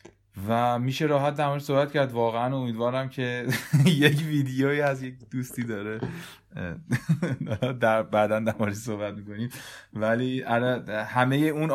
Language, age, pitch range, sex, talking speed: Persian, 30-49, 110-135 Hz, male, 120 wpm